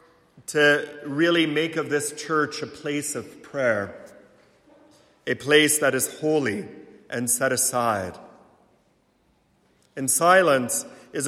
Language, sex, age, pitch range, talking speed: English, male, 30-49, 135-150 Hz, 110 wpm